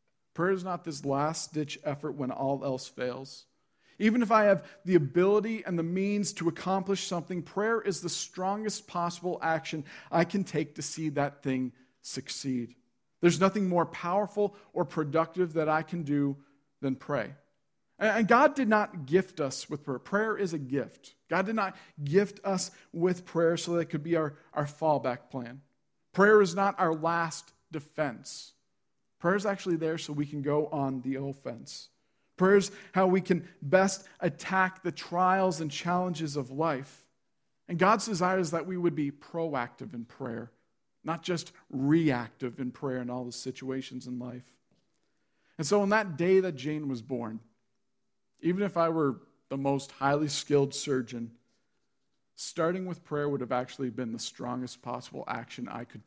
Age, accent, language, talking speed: 40-59, American, English, 170 wpm